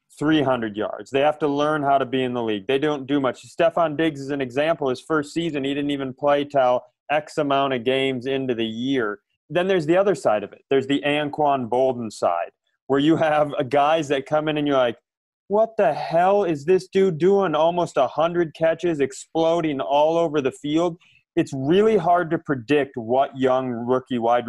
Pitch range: 130-160 Hz